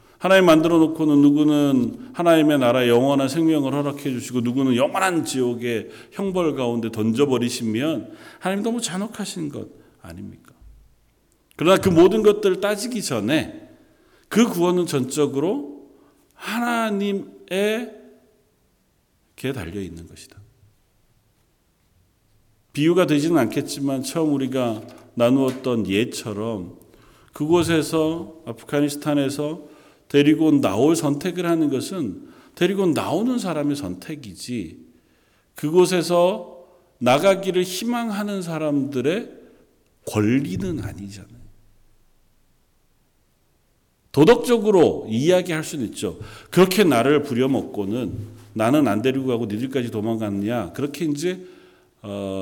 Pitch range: 115-180 Hz